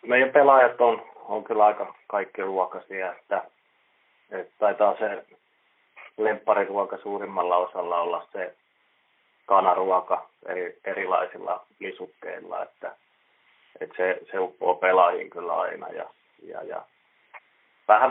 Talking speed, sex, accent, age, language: 105 wpm, male, native, 30-49, Finnish